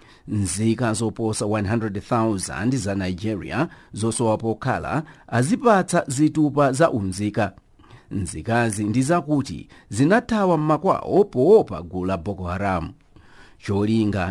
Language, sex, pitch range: English, male, 100-155 Hz